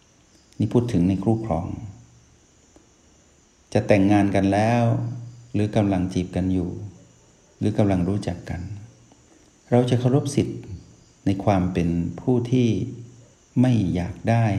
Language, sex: Thai, male